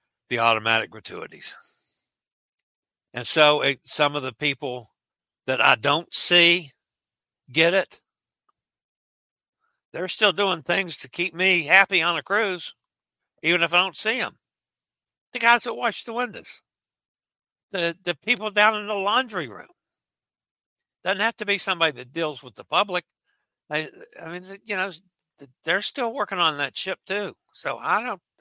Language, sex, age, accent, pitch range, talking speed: English, male, 60-79, American, 125-185 Hz, 150 wpm